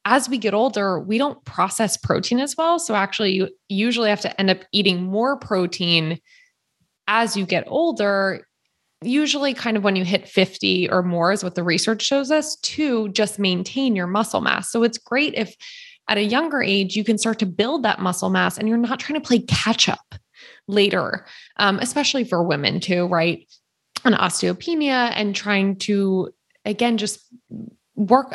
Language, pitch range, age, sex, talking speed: English, 190-240 Hz, 20-39, female, 180 wpm